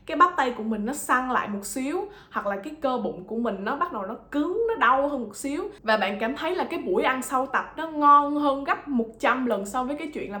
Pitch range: 215-280 Hz